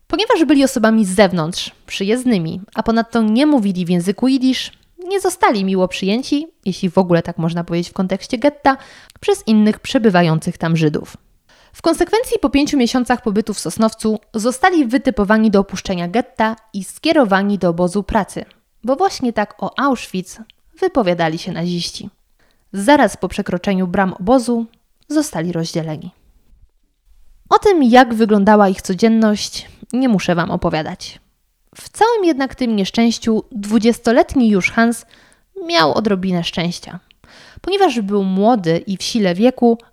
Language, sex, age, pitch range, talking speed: Polish, female, 20-39, 190-265 Hz, 140 wpm